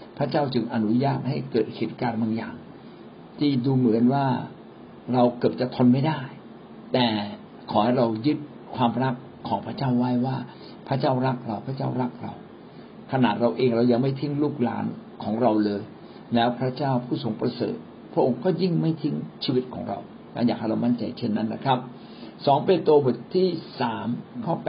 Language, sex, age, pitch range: Thai, male, 60-79, 115-145 Hz